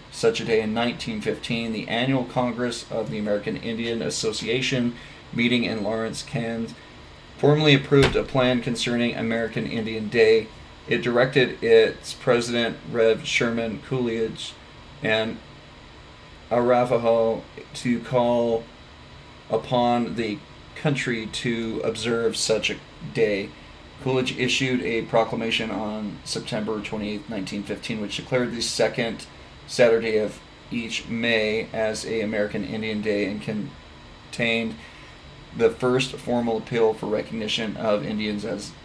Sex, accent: male, American